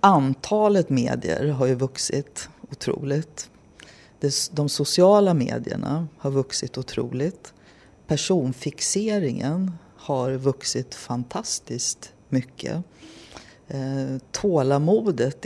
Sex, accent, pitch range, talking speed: female, native, 130-165 Hz, 70 wpm